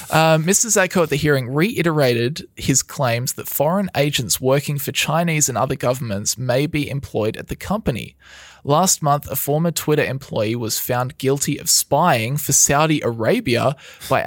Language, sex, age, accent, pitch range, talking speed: English, male, 20-39, Australian, 130-160 Hz, 160 wpm